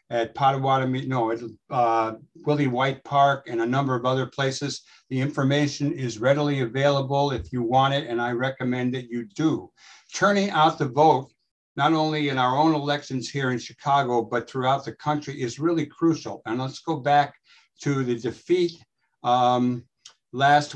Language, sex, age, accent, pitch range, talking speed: English, male, 60-79, American, 125-150 Hz, 165 wpm